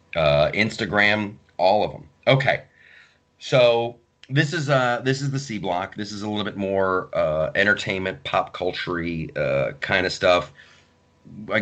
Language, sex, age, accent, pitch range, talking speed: English, male, 30-49, American, 80-125 Hz, 155 wpm